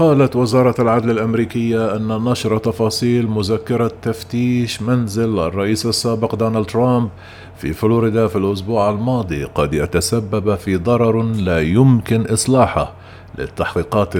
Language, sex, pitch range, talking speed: Arabic, male, 95-115 Hz, 115 wpm